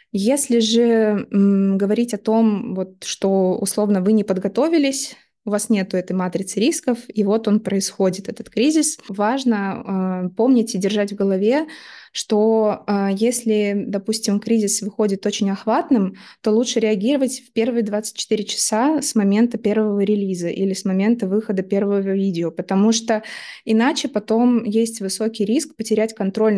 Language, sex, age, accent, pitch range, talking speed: Russian, female, 20-39, native, 200-230 Hz, 145 wpm